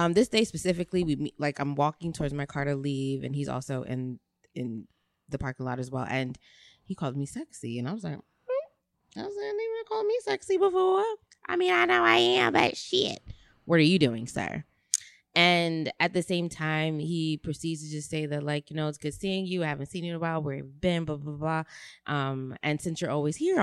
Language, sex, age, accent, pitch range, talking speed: English, female, 20-39, American, 135-175 Hz, 235 wpm